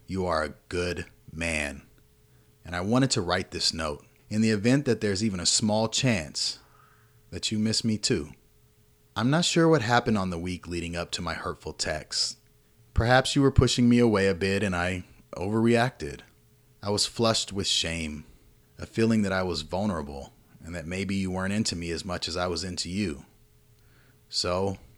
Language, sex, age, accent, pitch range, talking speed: English, male, 30-49, American, 90-115 Hz, 185 wpm